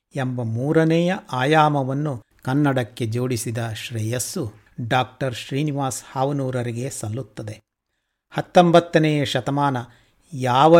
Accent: native